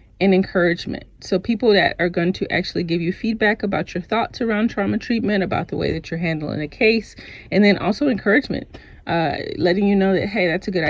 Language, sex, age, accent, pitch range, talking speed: English, female, 30-49, American, 170-220 Hz, 215 wpm